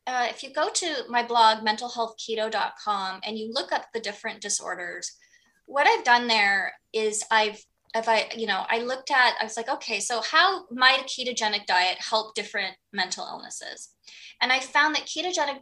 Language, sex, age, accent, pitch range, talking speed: English, female, 20-39, American, 215-285 Hz, 180 wpm